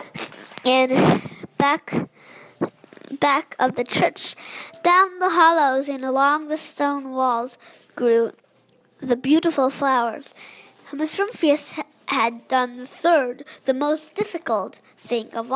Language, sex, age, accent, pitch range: Chinese, female, 10-29, American, 255-315 Hz